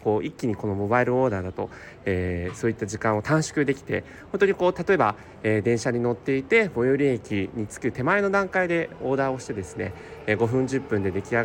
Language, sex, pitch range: Japanese, male, 100-170 Hz